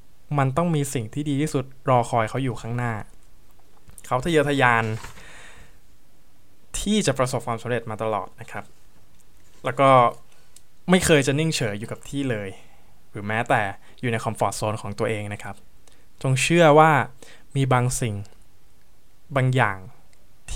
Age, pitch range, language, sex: 20-39, 105-140 Hz, Thai, male